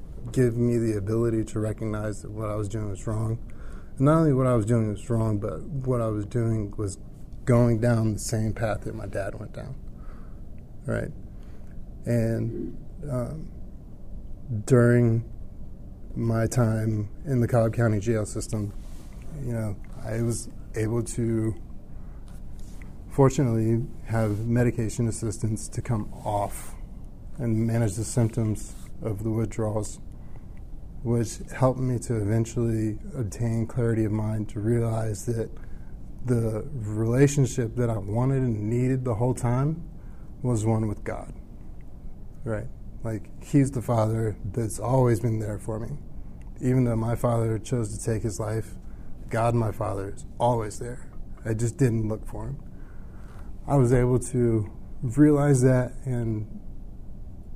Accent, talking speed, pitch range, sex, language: American, 140 wpm, 110-120 Hz, male, English